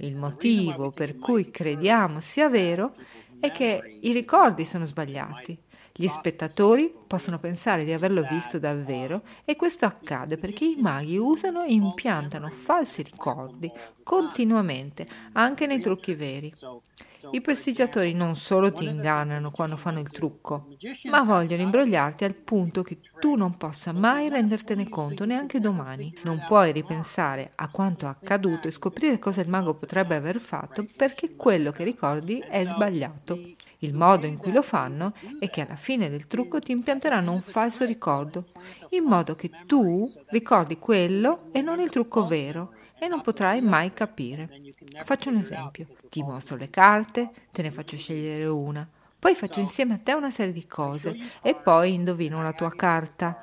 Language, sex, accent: Italian, female, native